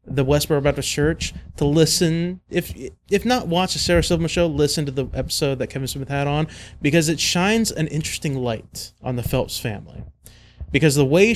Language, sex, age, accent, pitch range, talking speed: English, male, 30-49, American, 125-155 Hz, 190 wpm